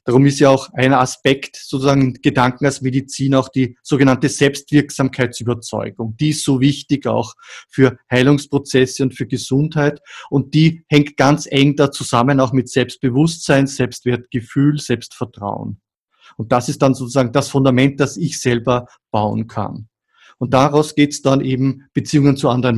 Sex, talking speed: male, 155 wpm